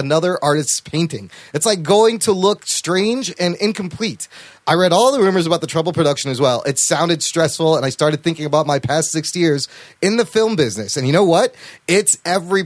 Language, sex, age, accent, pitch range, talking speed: English, male, 30-49, American, 145-190 Hz, 210 wpm